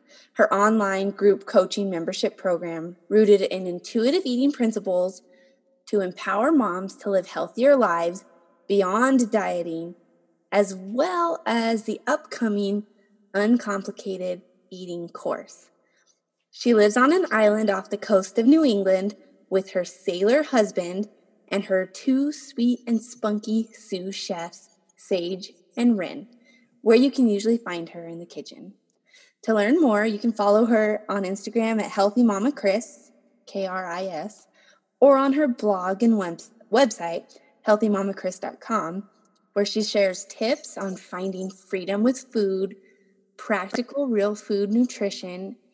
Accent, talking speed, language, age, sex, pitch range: American, 130 wpm, English, 20-39, female, 190-240 Hz